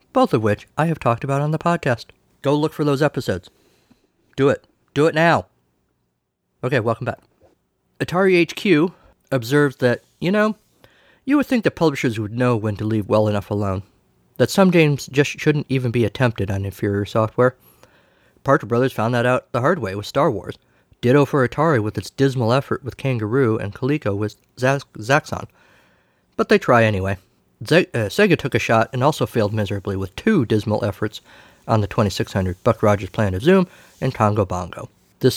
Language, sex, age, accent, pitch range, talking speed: English, male, 50-69, American, 105-140 Hz, 180 wpm